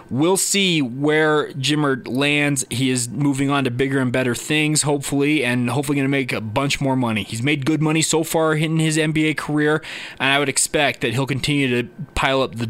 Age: 20-39